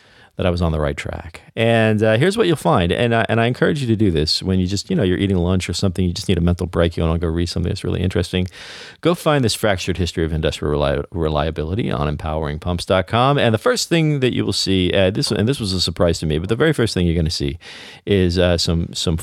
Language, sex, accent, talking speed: English, male, American, 265 wpm